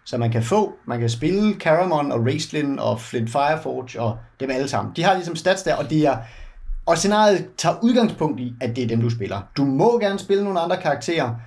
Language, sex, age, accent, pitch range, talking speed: Danish, male, 30-49, native, 120-180 Hz, 215 wpm